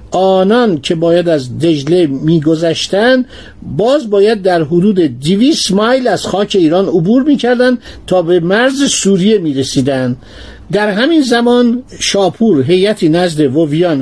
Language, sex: Persian, male